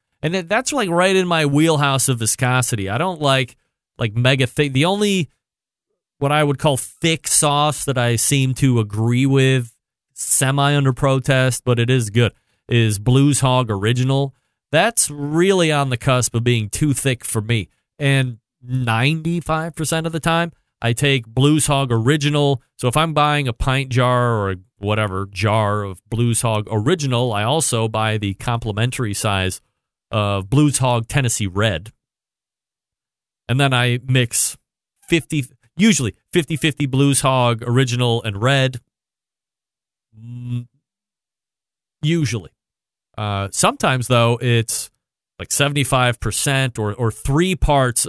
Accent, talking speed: American, 135 wpm